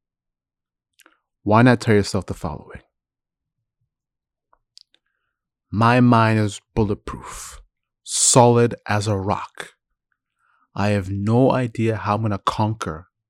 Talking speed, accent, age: 105 wpm, American, 30-49